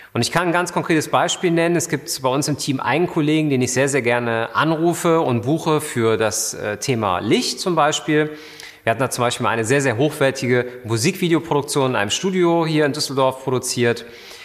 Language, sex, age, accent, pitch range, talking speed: German, male, 30-49, German, 125-160 Hz, 200 wpm